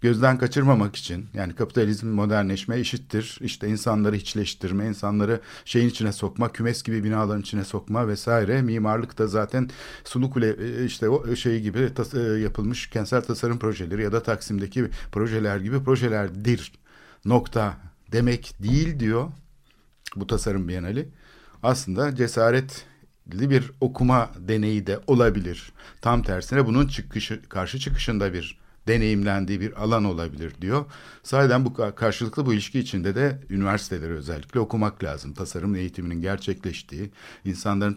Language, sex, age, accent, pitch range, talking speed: Turkish, male, 60-79, native, 100-120 Hz, 130 wpm